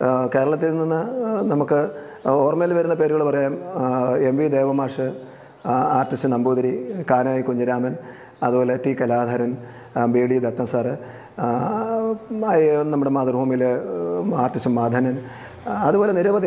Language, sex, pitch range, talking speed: English, male, 120-140 Hz, 110 wpm